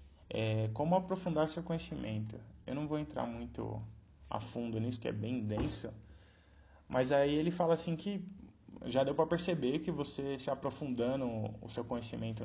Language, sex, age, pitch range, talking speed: Portuguese, male, 20-39, 110-145 Hz, 165 wpm